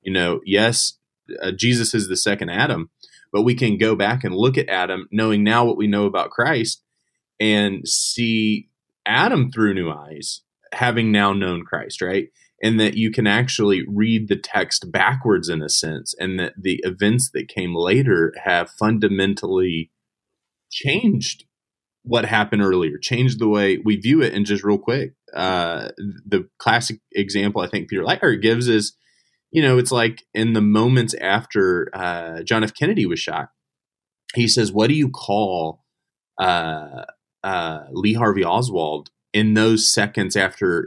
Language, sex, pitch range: English, male, 95-120 Hz